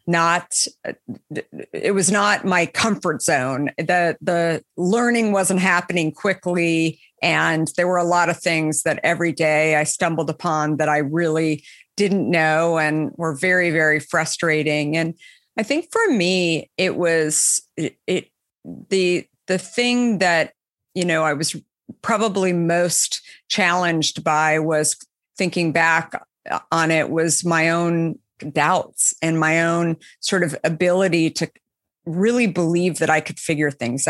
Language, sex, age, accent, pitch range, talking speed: English, female, 50-69, American, 155-185 Hz, 140 wpm